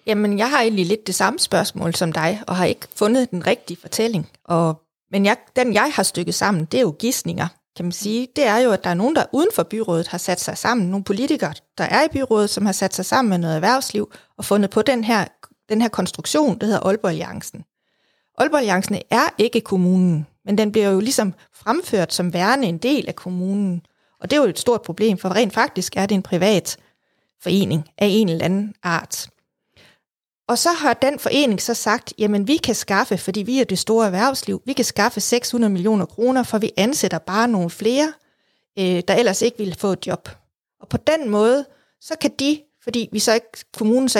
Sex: female